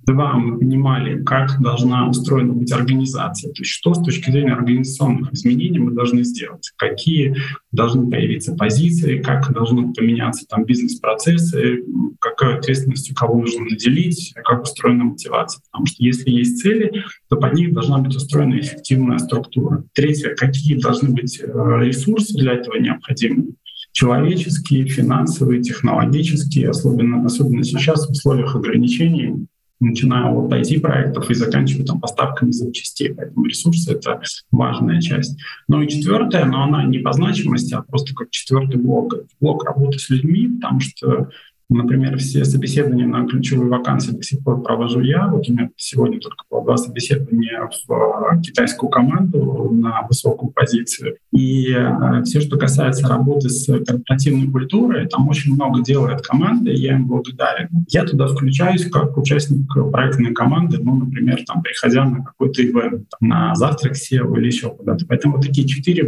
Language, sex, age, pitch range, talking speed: Russian, male, 20-39, 125-150 Hz, 150 wpm